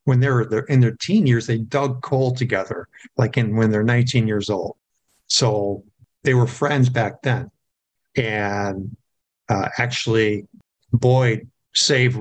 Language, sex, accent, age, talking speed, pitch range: English, male, American, 50-69, 135 wpm, 110-135 Hz